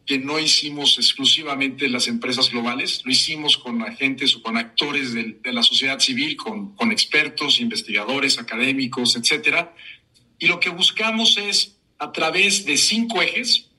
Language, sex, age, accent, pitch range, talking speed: Spanish, male, 50-69, Mexican, 130-180 Hz, 150 wpm